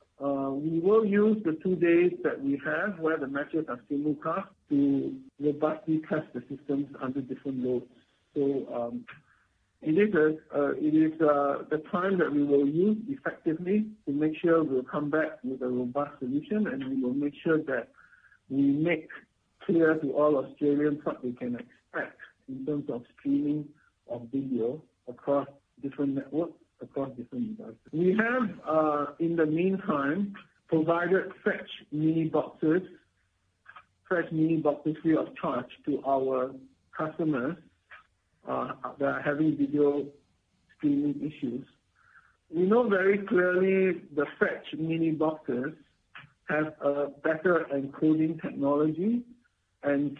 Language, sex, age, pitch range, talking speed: English, male, 60-79, 140-175 Hz, 140 wpm